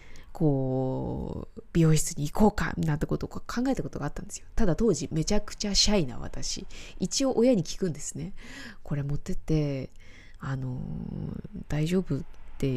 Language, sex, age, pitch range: Japanese, female, 20-39, 150-210 Hz